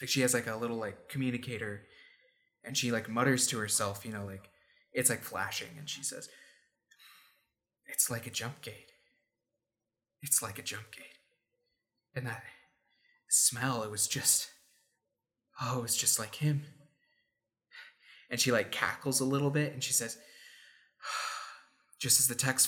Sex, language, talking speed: male, English, 155 wpm